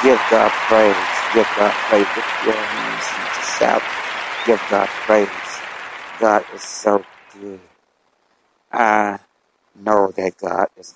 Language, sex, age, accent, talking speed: English, male, 60-79, American, 110 wpm